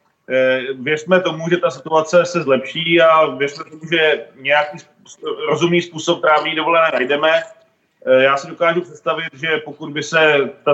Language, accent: Czech, native